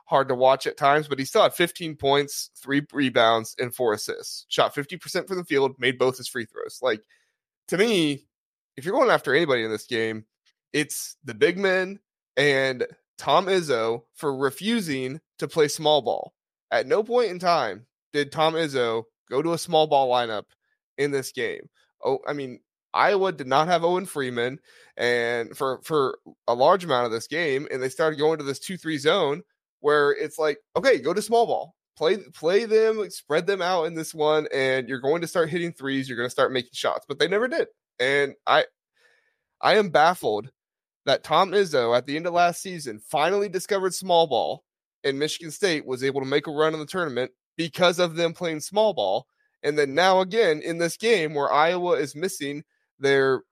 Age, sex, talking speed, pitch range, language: 20-39, male, 195 wpm, 135-185 Hz, English